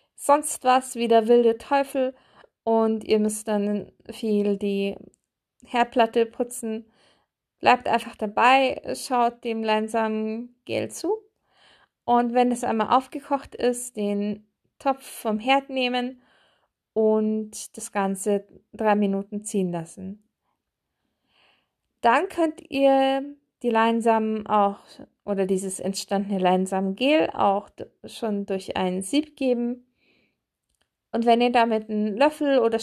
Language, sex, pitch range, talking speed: German, female, 205-255 Hz, 115 wpm